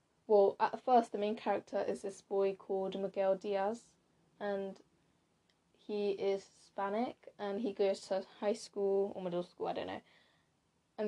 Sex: female